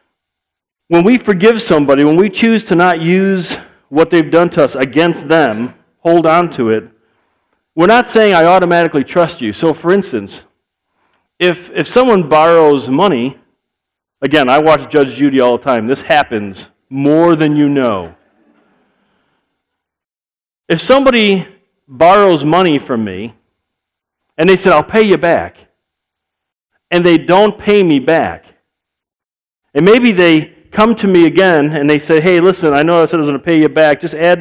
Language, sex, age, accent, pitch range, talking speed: English, male, 50-69, American, 145-200 Hz, 165 wpm